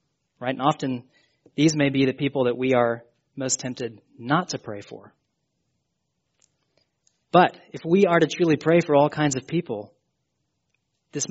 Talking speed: 160 wpm